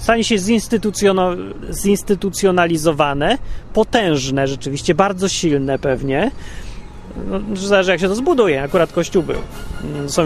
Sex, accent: male, native